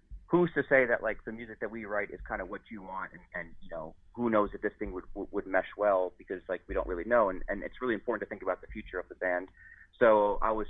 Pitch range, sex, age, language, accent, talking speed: 95-105 Hz, male, 30-49, English, American, 285 wpm